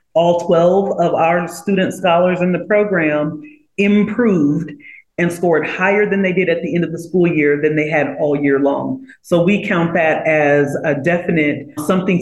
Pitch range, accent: 155-190 Hz, American